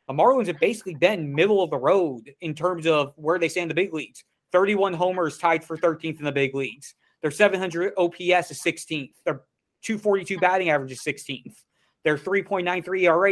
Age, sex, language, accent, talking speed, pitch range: 30-49, male, English, American, 185 wpm, 155-180 Hz